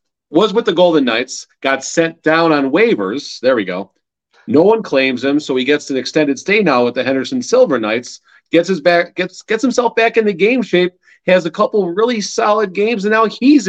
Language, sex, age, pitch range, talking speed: English, male, 40-59, 135-205 Hz, 215 wpm